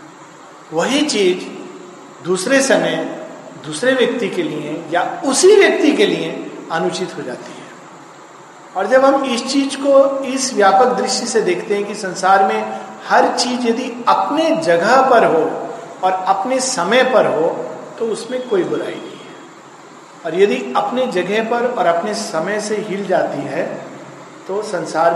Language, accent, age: Hindi, native, 50-69